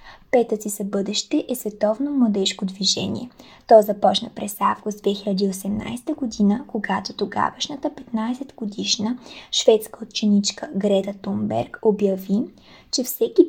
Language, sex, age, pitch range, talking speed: Bulgarian, female, 20-39, 200-245 Hz, 105 wpm